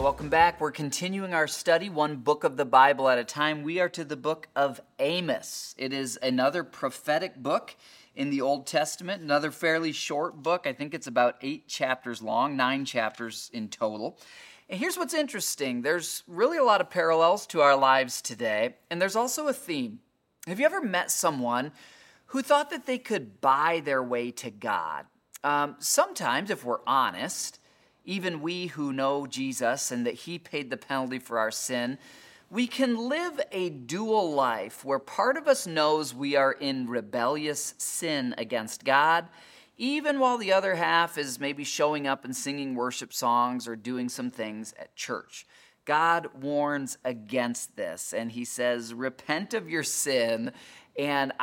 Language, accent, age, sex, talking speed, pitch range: English, American, 30-49, male, 170 wpm, 130-175 Hz